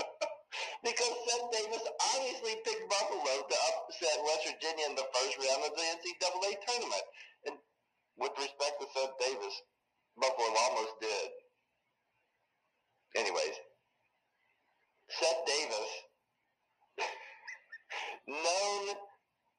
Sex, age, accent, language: male, 40-59, American, English